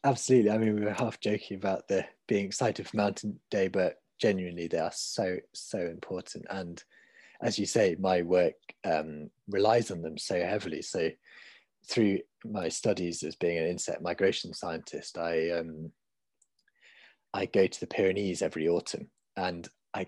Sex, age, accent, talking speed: male, 30-49, British, 160 wpm